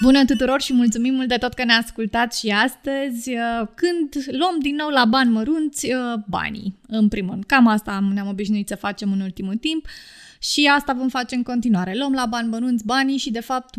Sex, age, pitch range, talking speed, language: female, 20-39, 210-265 Hz, 195 wpm, Romanian